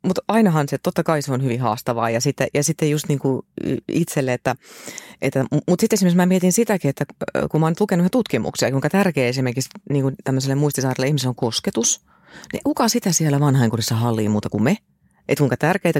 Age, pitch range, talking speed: 30-49, 125-175 Hz, 195 wpm